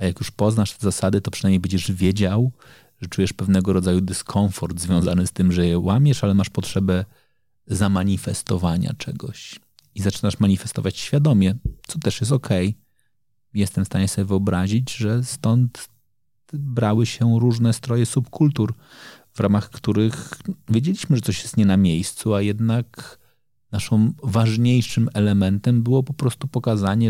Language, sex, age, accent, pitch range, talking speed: Polish, male, 30-49, native, 95-120 Hz, 145 wpm